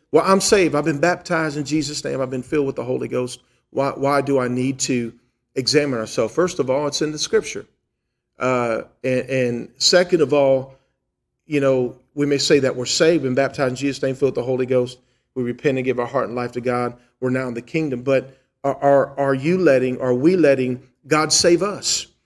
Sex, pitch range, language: male, 130-180 Hz, English